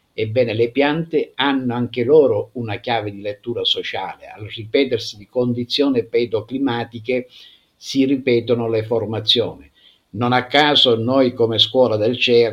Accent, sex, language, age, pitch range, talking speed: native, male, Italian, 50-69, 110-130 Hz, 135 wpm